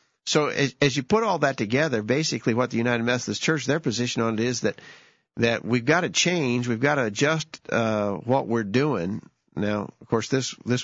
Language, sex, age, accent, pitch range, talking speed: English, male, 50-69, American, 110-130 Hz, 210 wpm